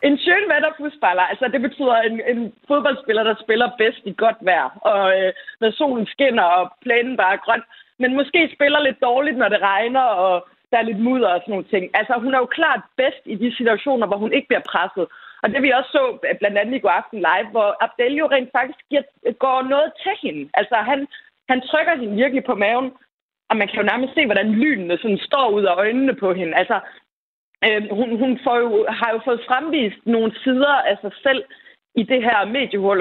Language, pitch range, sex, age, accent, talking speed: Danish, 210-275 Hz, female, 30-49, native, 215 wpm